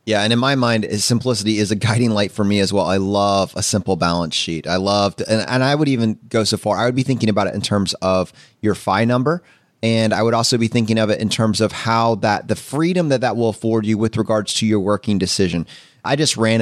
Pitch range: 105-135 Hz